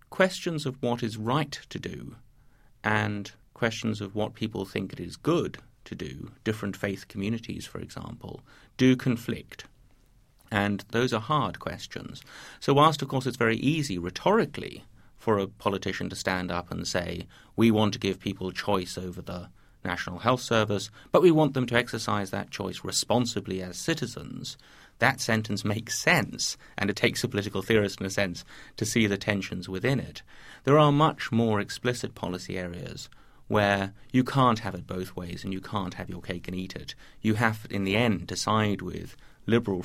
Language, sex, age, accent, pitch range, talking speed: English, male, 30-49, British, 95-120 Hz, 180 wpm